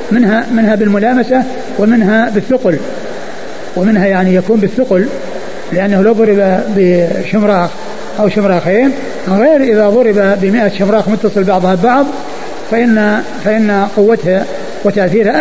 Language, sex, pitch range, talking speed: Arabic, male, 195-250 Hz, 100 wpm